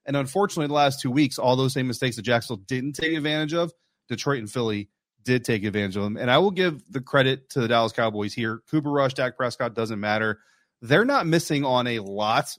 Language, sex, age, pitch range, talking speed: English, male, 30-49, 115-140 Hz, 225 wpm